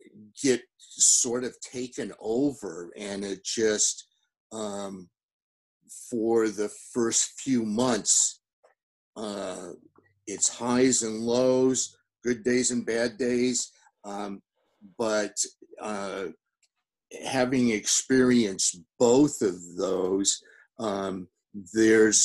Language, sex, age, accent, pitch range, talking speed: English, male, 50-69, American, 100-120 Hz, 90 wpm